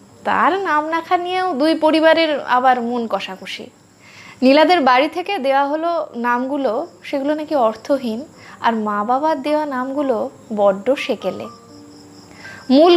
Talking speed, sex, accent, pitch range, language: 95 wpm, female, native, 225-310 Hz, Hindi